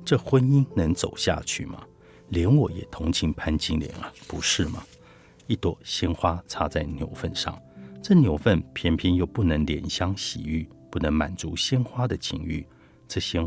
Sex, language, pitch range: male, Chinese, 80-110 Hz